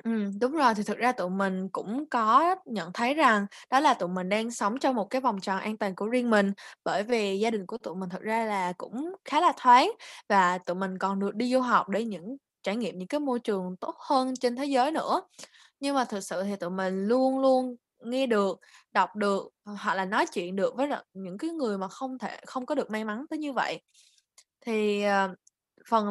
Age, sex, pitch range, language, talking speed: 20-39, female, 195-255 Hz, Vietnamese, 230 wpm